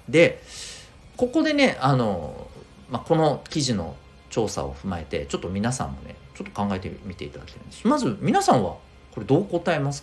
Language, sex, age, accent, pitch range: Japanese, male, 50-69, native, 85-130 Hz